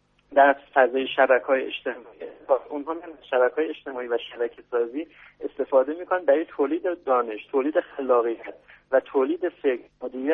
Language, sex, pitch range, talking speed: Persian, male, 130-175 Hz, 135 wpm